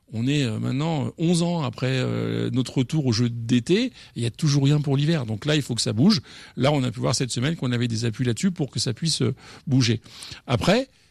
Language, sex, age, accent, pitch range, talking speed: French, male, 50-69, French, 125-160 Hz, 230 wpm